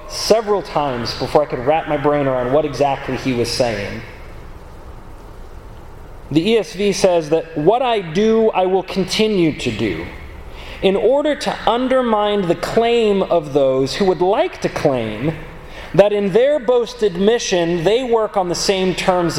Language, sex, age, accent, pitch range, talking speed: English, male, 30-49, American, 140-200 Hz, 155 wpm